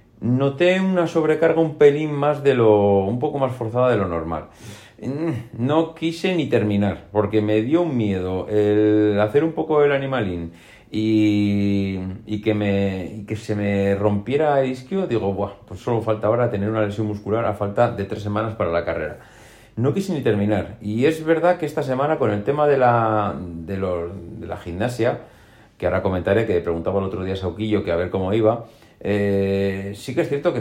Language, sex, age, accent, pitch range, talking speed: Spanish, male, 40-59, Spanish, 100-120 Hz, 195 wpm